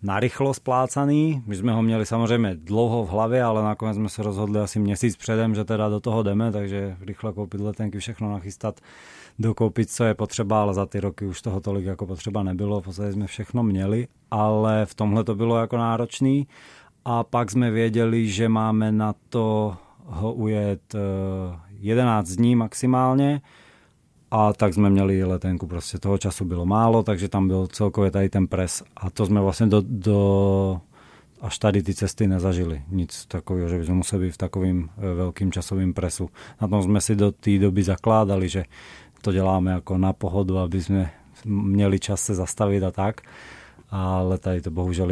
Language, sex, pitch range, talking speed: Czech, male, 95-110 Hz, 180 wpm